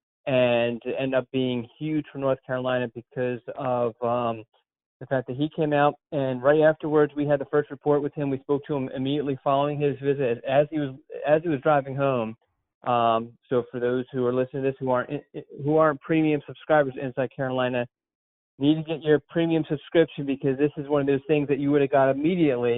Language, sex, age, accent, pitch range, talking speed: English, male, 30-49, American, 125-150 Hz, 210 wpm